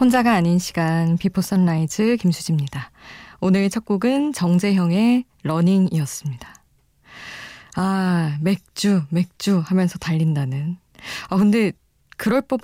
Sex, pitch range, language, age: female, 160-205 Hz, Korean, 20-39